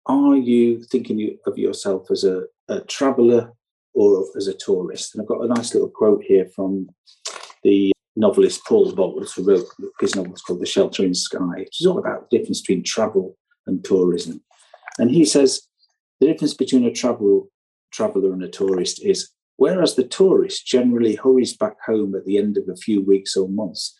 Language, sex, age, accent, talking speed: English, male, 50-69, British, 190 wpm